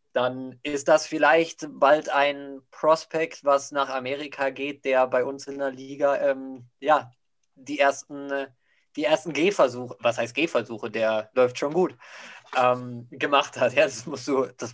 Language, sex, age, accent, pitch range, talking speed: German, male, 20-39, German, 125-145 Hz, 160 wpm